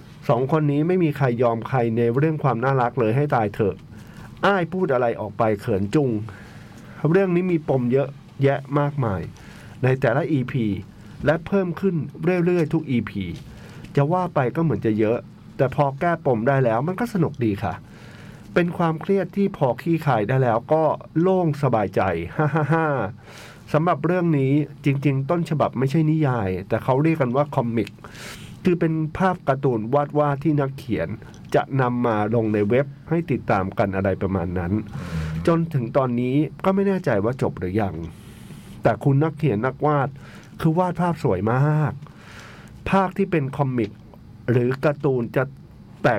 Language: Thai